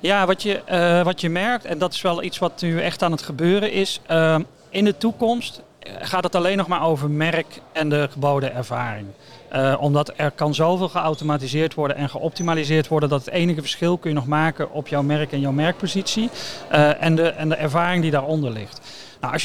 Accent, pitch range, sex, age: Dutch, 150-180 Hz, male, 40-59